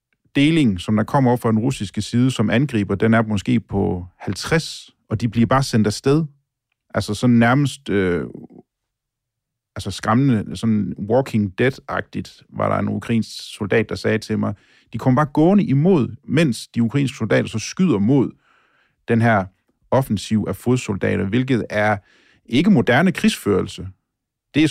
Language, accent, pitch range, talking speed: Danish, native, 105-125 Hz, 155 wpm